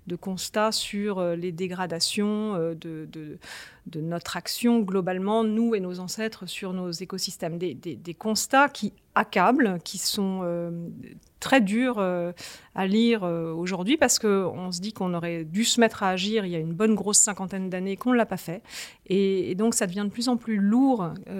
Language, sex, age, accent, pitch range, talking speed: French, female, 40-59, French, 185-230 Hz, 195 wpm